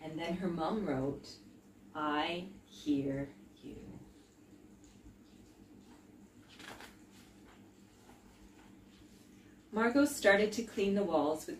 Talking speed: 80 wpm